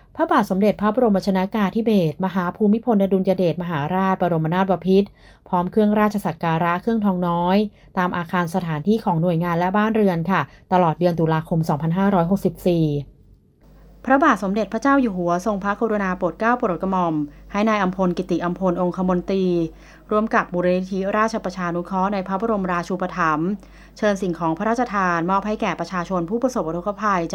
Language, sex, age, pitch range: Thai, female, 30-49, 170-200 Hz